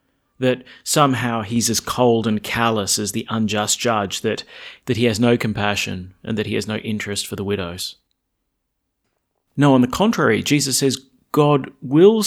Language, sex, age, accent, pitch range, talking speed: English, male, 30-49, Australian, 105-135 Hz, 165 wpm